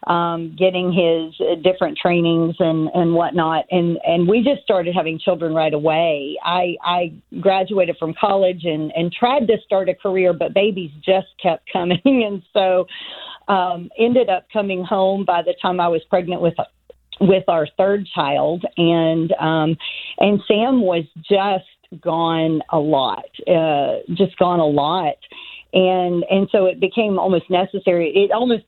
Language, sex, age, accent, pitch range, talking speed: English, female, 40-59, American, 170-200 Hz, 160 wpm